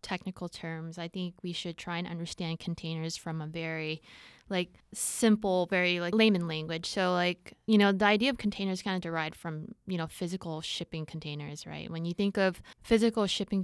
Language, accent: English, American